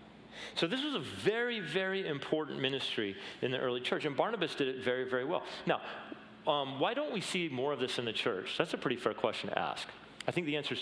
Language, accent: English, American